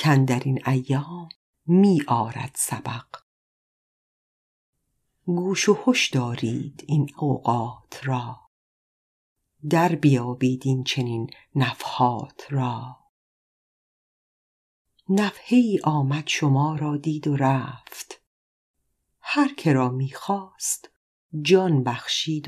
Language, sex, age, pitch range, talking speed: Persian, female, 50-69, 130-170 Hz, 85 wpm